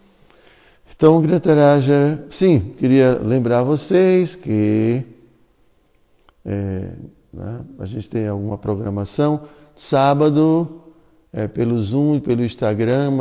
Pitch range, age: 105-130 Hz, 60-79